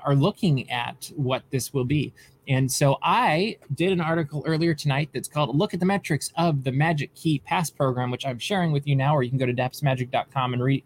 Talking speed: 225 wpm